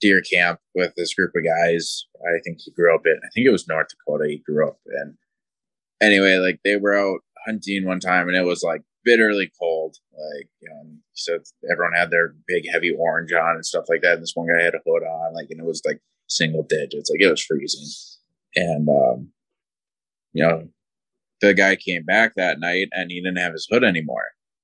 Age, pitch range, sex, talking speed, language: 20-39, 90-120 Hz, male, 215 wpm, English